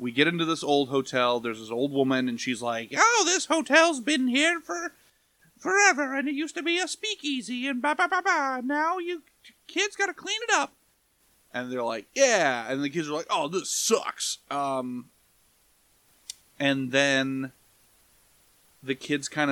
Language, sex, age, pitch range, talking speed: English, male, 30-49, 135-220 Hz, 180 wpm